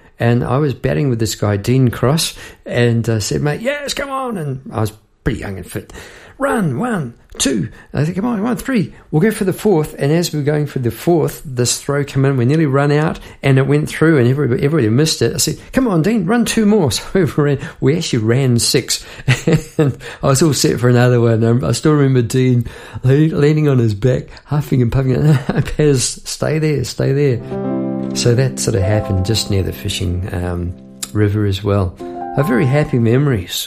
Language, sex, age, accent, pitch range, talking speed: English, male, 50-69, British, 110-150 Hz, 210 wpm